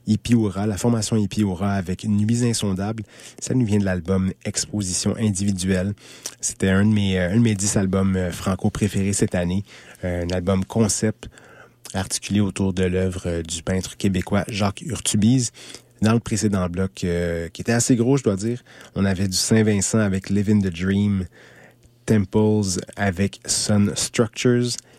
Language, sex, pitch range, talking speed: English, male, 95-110 Hz, 155 wpm